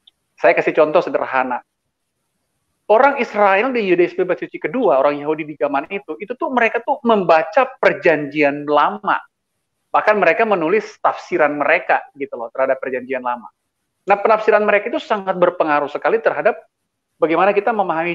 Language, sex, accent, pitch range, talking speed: Indonesian, male, native, 140-205 Hz, 140 wpm